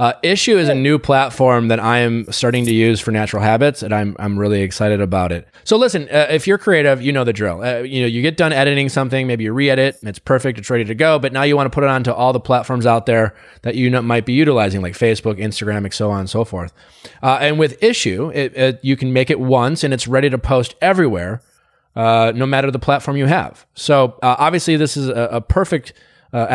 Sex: male